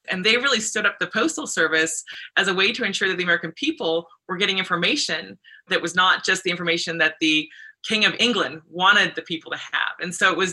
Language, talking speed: English, 230 wpm